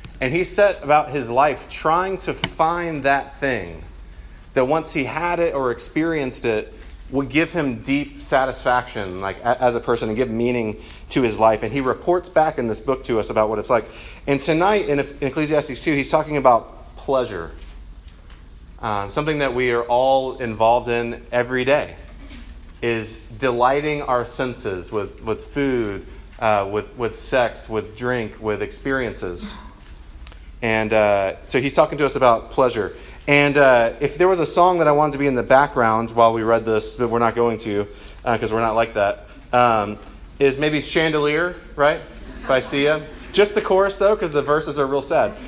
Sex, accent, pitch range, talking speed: male, American, 110-145 Hz, 180 wpm